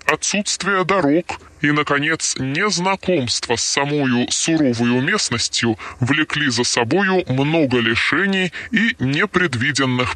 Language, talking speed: Russian, 95 wpm